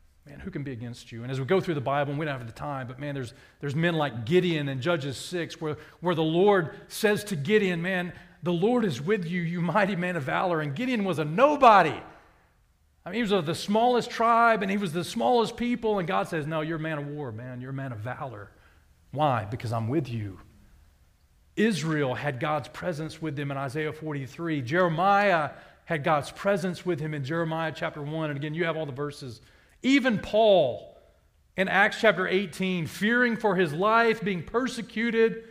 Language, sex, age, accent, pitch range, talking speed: English, male, 40-59, American, 125-185 Hz, 210 wpm